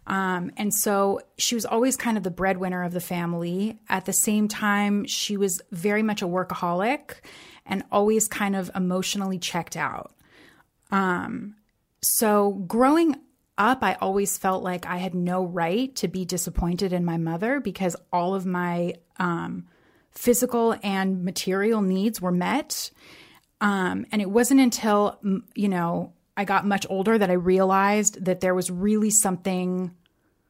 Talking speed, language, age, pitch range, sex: 155 wpm, English, 30-49, 180-205 Hz, female